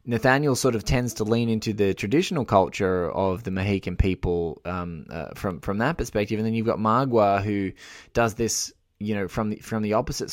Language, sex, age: English, male, 20-39